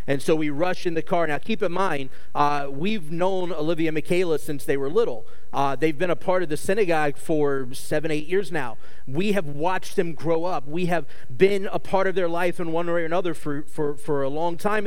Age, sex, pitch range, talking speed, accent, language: 30-49, male, 145-185 Hz, 240 wpm, American, English